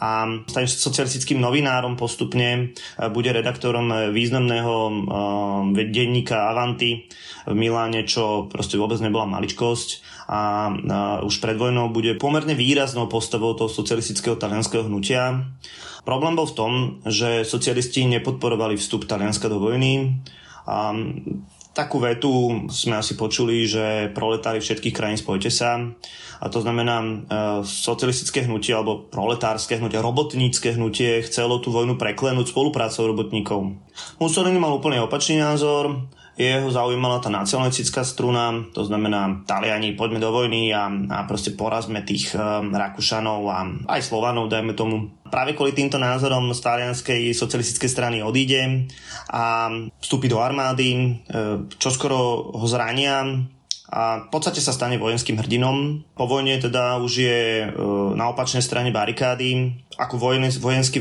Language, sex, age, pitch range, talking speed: Slovak, male, 20-39, 110-125 Hz, 130 wpm